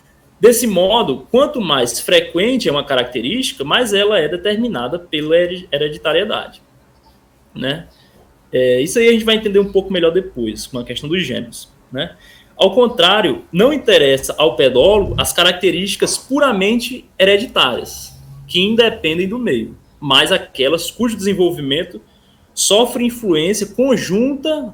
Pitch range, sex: 150-235 Hz, male